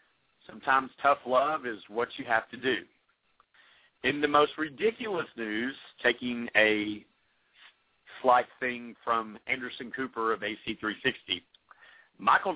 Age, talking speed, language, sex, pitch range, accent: 50-69, 115 wpm, English, male, 125-160 Hz, American